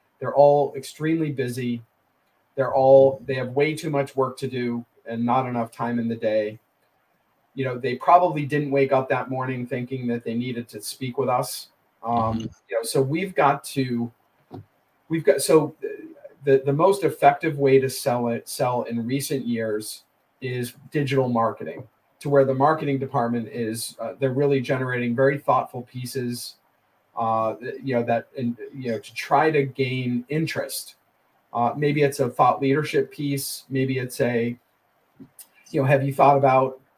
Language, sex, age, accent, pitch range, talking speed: English, male, 40-59, American, 120-140 Hz, 170 wpm